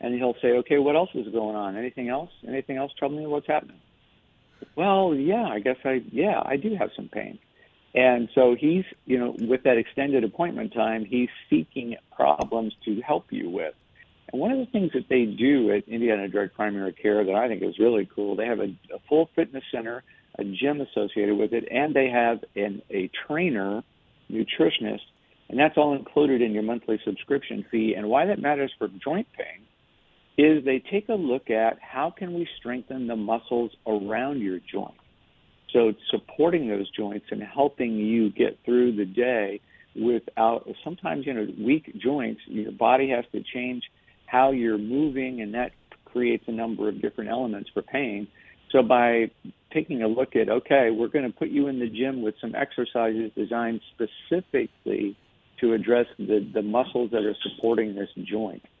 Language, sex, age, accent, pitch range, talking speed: English, male, 50-69, American, 110-135 Hz, 180 wpm